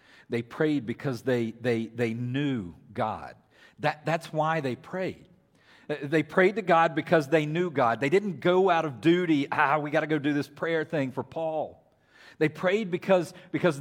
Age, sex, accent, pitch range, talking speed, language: 40-59, male, American, 120-175 Hz, 175 wpm, English